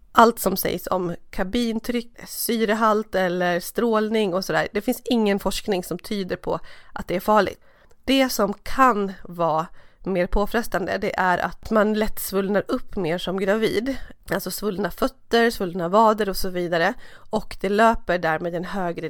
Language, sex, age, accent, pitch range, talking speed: Swedish, female, 30-49, native, 180-225 Hz, 160 wpm